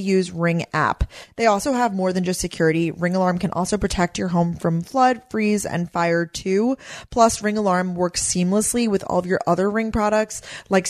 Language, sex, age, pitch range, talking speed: English, female, 20-39, 175-220 Hz, 200 wpm